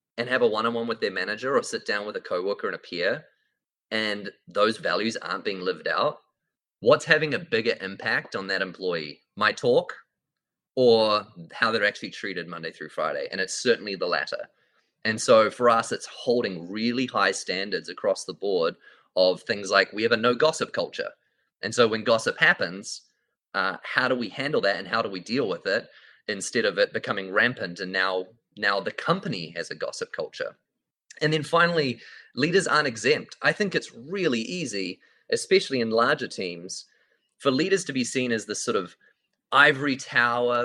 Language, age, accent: English, 20-39, Australian